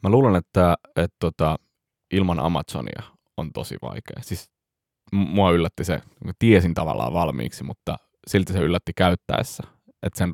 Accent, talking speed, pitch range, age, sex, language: native, 150 wpm, 85-105 Hz, 20-39, male, Finnish